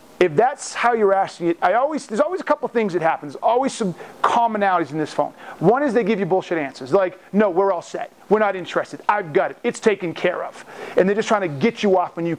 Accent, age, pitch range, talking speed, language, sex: American, 40-59, 175-235 Hz, 265 wpm, English, male